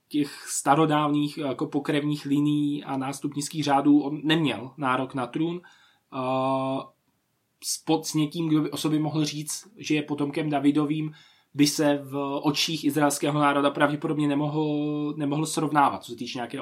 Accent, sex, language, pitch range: native, male, Czech, 135-155 Hz